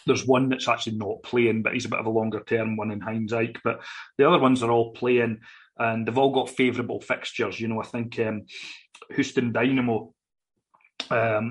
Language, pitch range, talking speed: English, 115-130 Hz, 205 wpm